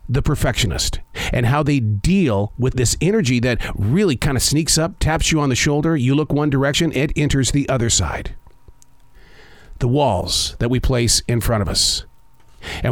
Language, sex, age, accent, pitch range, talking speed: English, male, 50-69, American, 100-140 Hz, 175 wpm